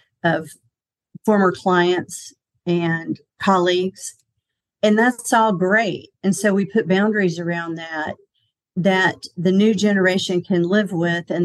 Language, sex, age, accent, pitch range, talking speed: English, female, 40-59, American, 170-195 Hz, 125 wpm